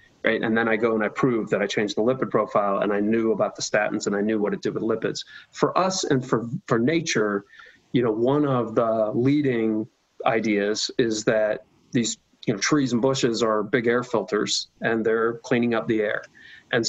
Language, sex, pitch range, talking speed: English, male, 110-130 Hz, 215 wpm